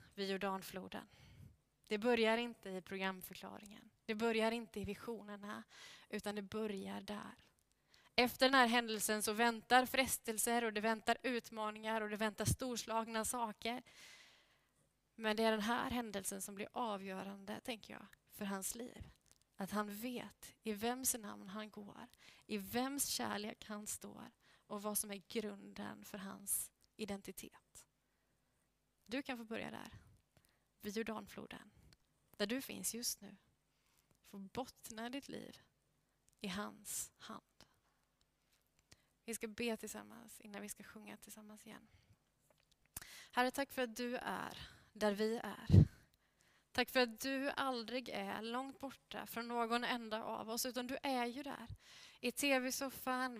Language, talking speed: Swedish, 140 wpm